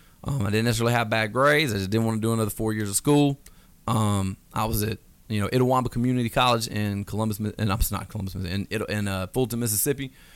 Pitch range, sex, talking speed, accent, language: 100-115 Hz, male, 220 wpm, American, English